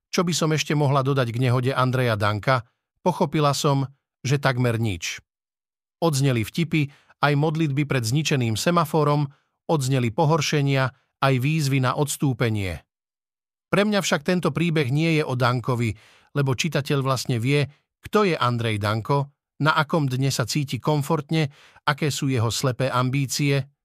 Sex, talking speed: male, 140 wpm